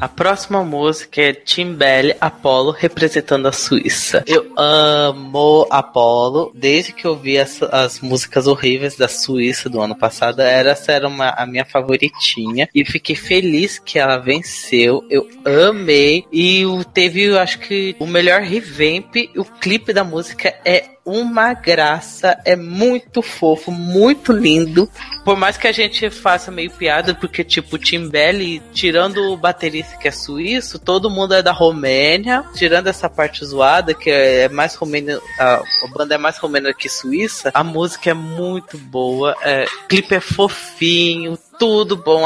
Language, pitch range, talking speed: Portuguese, 140-185 Hz, 155 wpm